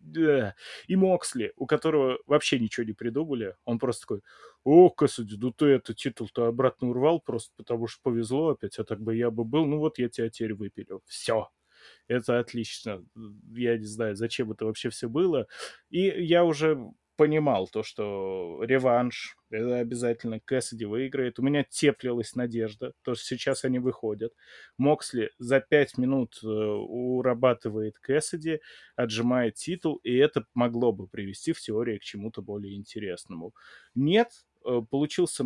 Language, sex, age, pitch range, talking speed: Russian, male, 20-39, 115-140 Hz, 155 wpm